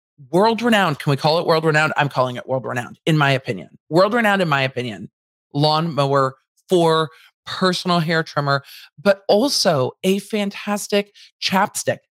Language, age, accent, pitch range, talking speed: English, 40-59, American, 145-200 Hz, 140 wpm